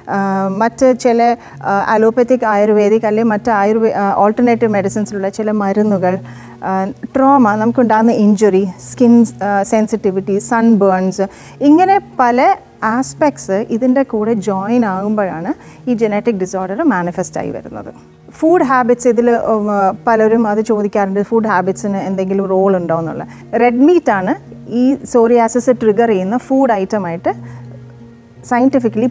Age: 30-49